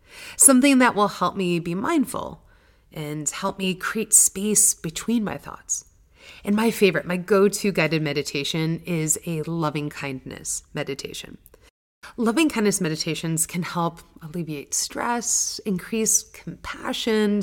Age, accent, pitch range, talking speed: 30-49, American, 155-220 Hz, 125 wpm